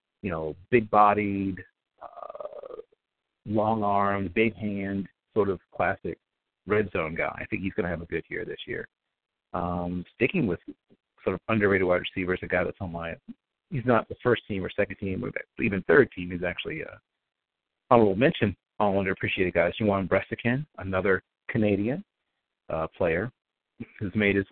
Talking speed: 165 wpm